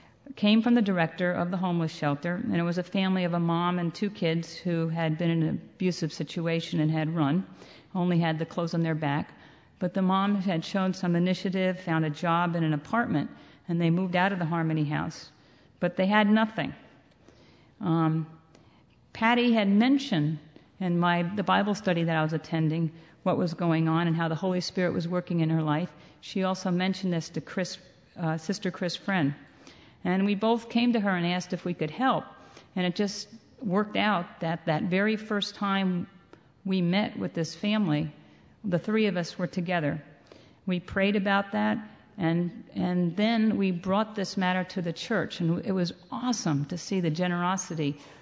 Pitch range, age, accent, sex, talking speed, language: 165-200 Hz, 50-69, American, female, 190 wpm, English